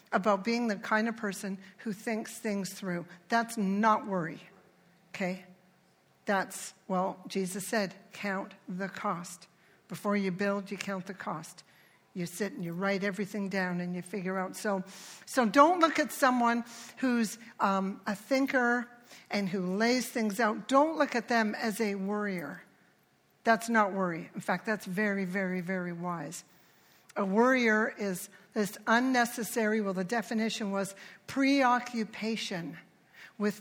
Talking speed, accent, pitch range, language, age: 145 wpm, American, 185-230 Hz, English, 60-79